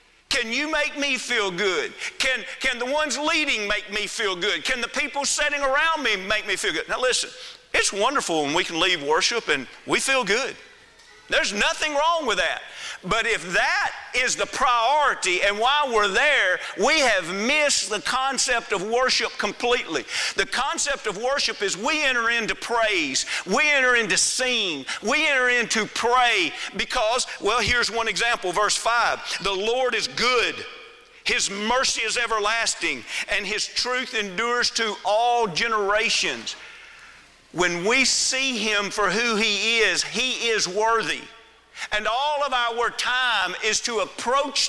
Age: 50-69